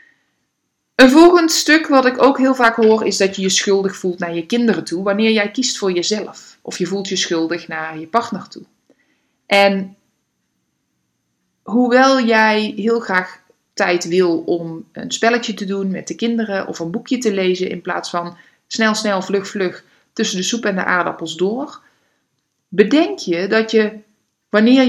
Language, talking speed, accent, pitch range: Dutch, 175 wpm, Dutch, 185-240 Hz